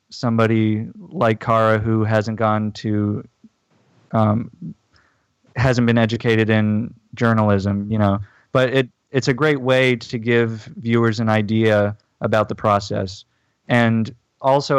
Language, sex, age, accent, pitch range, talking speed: English, male, 20-39, American, 105-120 Hz, 125 wpm